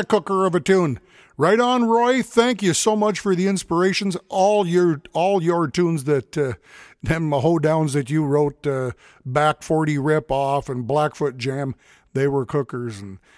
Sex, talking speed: male, 170 wpm